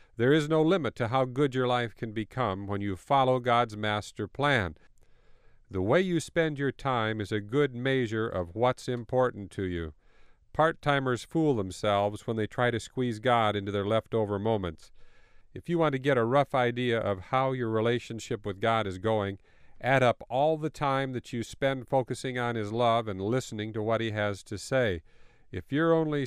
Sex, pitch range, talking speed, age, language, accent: male, 105-135 Hz, 190 wpm, 50-69, English, American